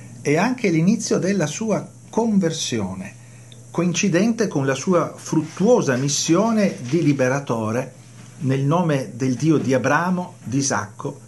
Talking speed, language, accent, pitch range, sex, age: 115 wpm, Italian, native, 120-155 Hz, male, 40-59